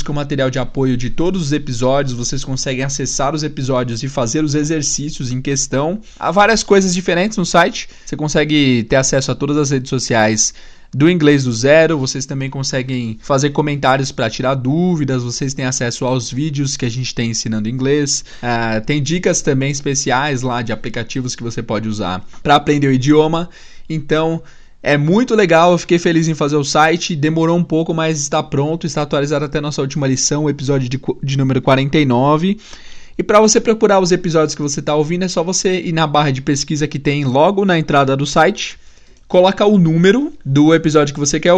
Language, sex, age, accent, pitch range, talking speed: Portuguese, male, 20-39, Brazilian, 135-165 Hz, 200 wpm